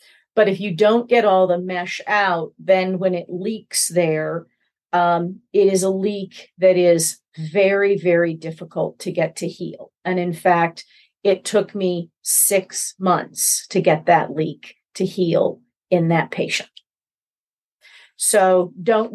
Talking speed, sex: 145 wpm, female